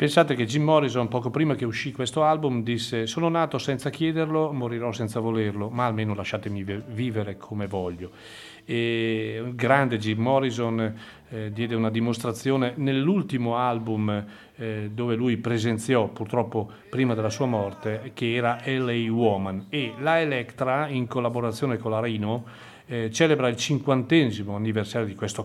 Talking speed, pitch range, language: 150 wpm, 110-135 Hz, Italian